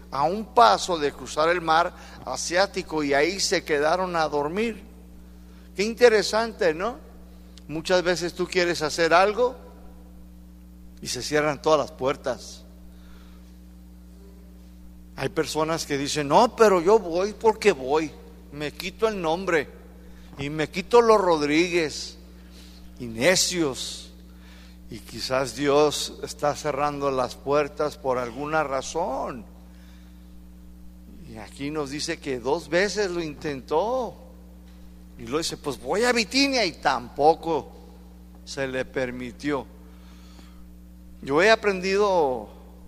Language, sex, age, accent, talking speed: Spanish, male, 50-69, Mexican, 120 wpm